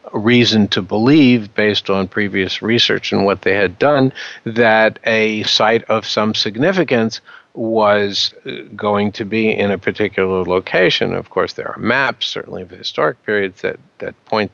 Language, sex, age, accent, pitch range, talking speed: English, male, 50-69, American, 100-115 Hz, 160 wpm